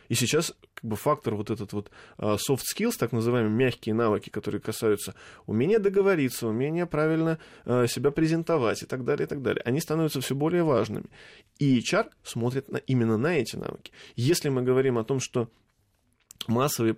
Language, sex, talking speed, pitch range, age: Russian, male, 160 wpm, 115-140 Hz, 20-39